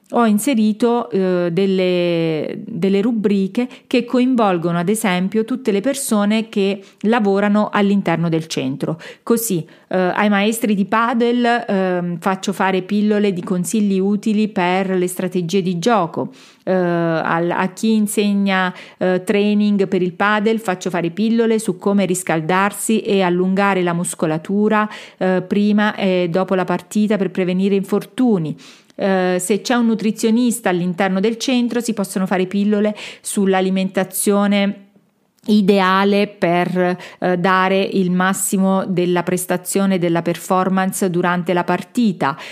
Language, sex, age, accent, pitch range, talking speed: Italian, female, 40-59, native, 185-215 Hz, 125 wpm